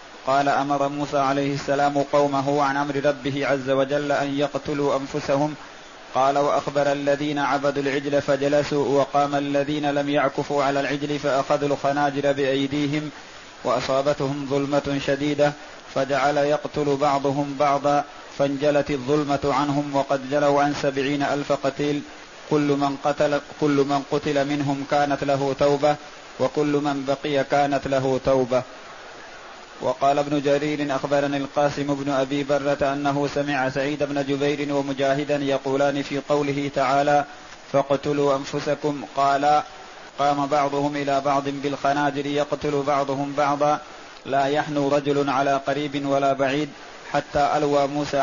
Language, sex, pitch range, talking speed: Arabic, male, 140-145 Hz, 125 wpm